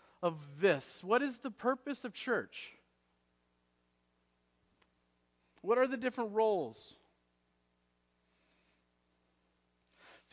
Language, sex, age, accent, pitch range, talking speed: English, male, 40-59, American, 145-225 Hz, 85 wpm